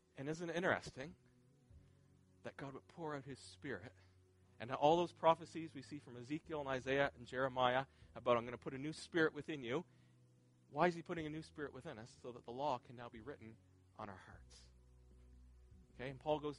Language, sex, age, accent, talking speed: English, male, 40-59, American, 205 wpm